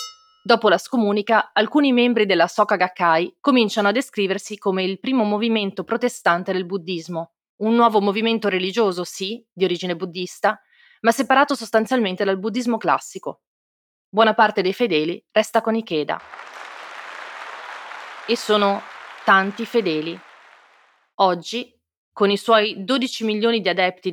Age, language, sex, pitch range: 30-49, Italian, female, 185-225 Hz